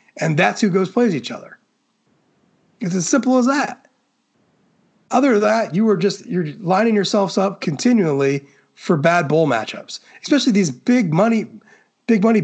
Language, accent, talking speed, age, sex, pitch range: English, American, 160 wpm, 30-49, male, 175-225 Hz